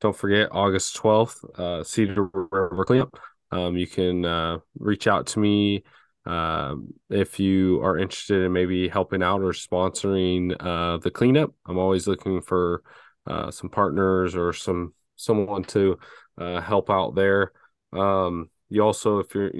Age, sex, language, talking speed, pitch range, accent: 20-39, male, English, 155 wpm, 90-100 Hz, American